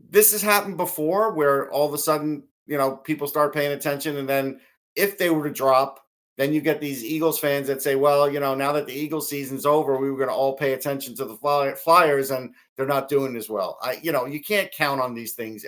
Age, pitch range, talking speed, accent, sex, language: 50-69, 125-150 Hz, 250 wpm, American, male, English